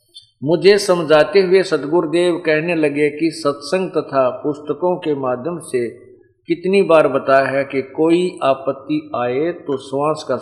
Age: 50-69